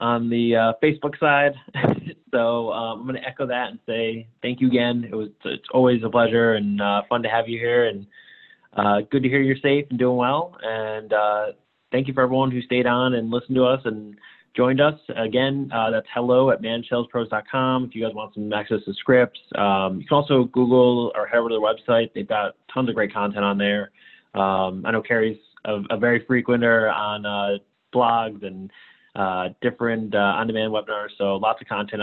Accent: American